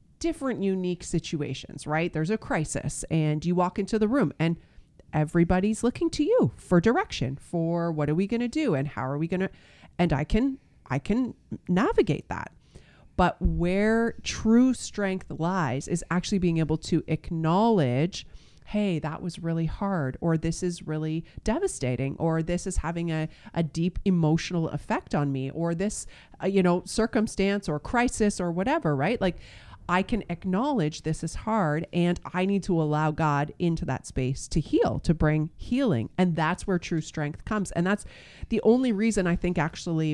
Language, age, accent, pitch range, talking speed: English, 30-49, American, 155-195 Hz, 175 wpm